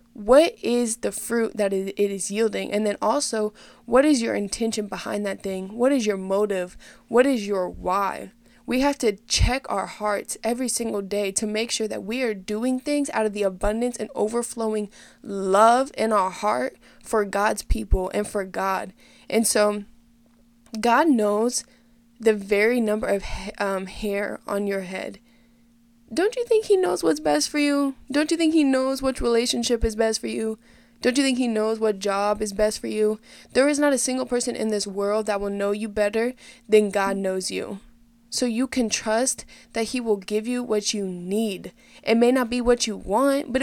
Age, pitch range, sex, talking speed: 10-29, 210-245 Hz, female, 195 wpm